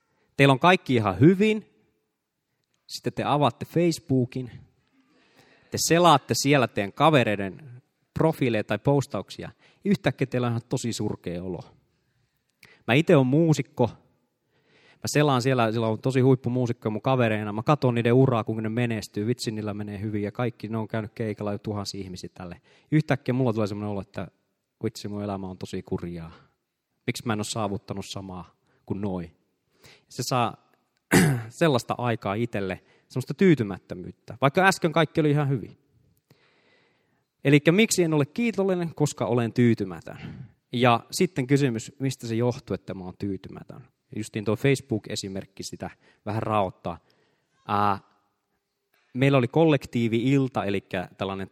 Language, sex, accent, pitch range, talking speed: Finnish, male, native, 105-140 Hz, 135 wpm